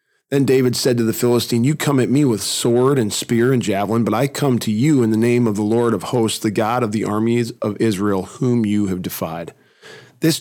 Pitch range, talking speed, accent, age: 110-130 Hz, 235 wpm, American, 40-59